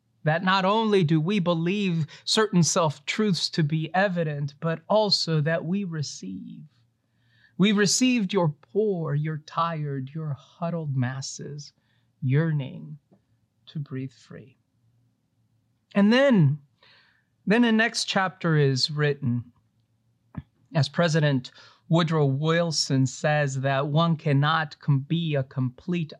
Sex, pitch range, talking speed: male, 125-170 Hz, 110 wpm